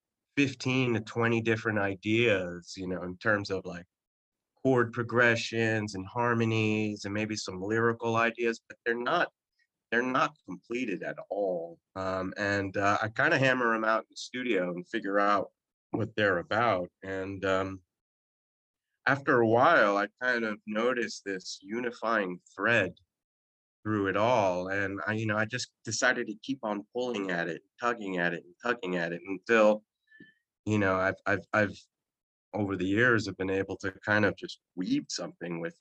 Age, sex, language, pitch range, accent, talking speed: 30-49, male, English, 95-120 Hz, American, 170 wpm